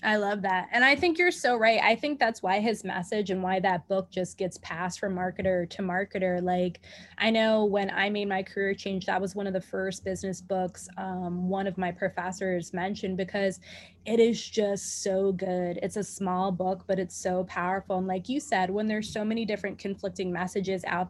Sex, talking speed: female, 215 wpm